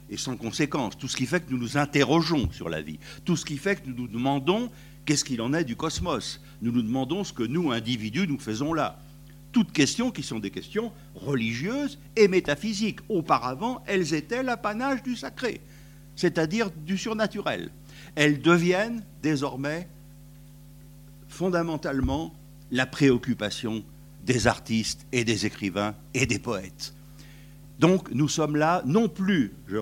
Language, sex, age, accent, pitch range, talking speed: French, male, 60-79, French, 130-165 Hz, 155 wpm